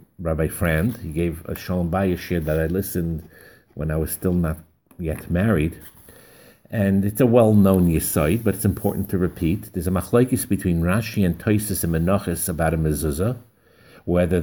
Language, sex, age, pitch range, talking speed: English, male, 50-69, 85-110 Hz, 165 wpm